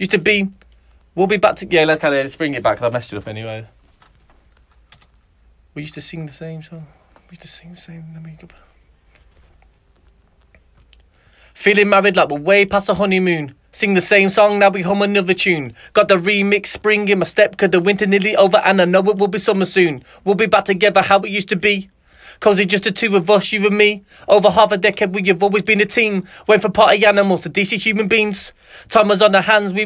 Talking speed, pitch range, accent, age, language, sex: 230 wpm, 160-215 Hz, British, 30-49, English, male